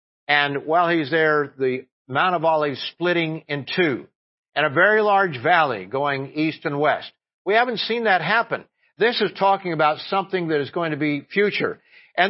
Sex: male